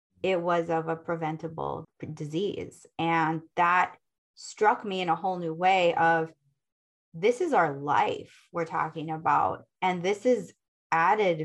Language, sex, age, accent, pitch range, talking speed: English, female, 20-39, American, 165-210 Hz, 140 wpm